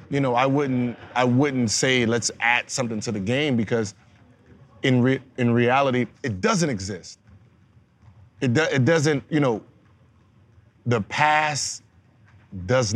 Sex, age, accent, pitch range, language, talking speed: male, 30-49, American, 110-150 Hz, English, 140 wpm